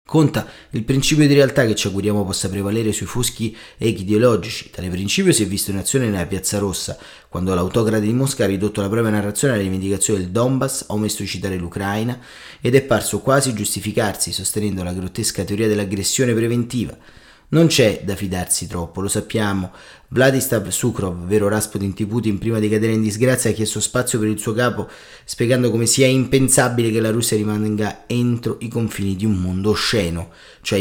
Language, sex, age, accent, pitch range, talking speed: Italian, male, 30-49, native, 100-120 Hz, 185 wpm